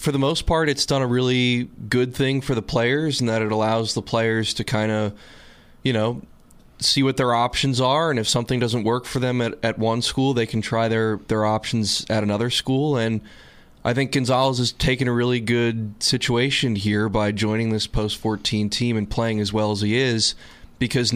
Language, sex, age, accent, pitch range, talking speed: English, male, 20-39, American, 110-125 Hz, 210 wpm